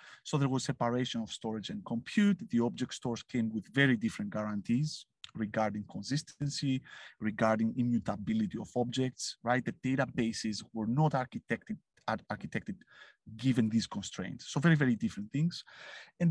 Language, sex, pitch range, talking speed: English, male, 120-165 Hz, 140 wpm